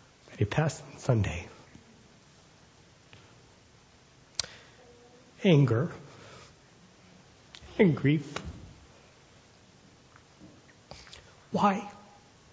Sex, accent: male, American